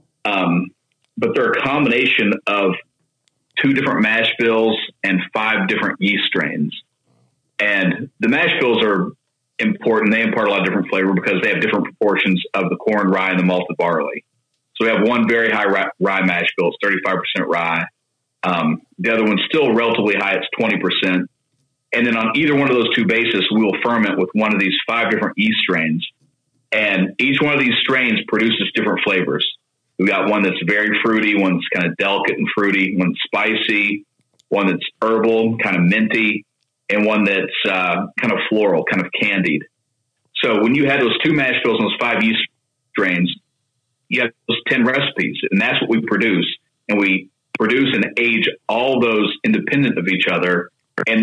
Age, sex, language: 40-59, male, English